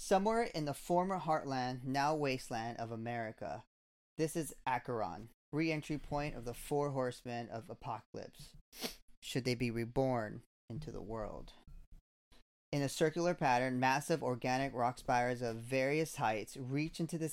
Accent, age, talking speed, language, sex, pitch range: American, 30-49, 140 wpm, English, male, 120-145 Hz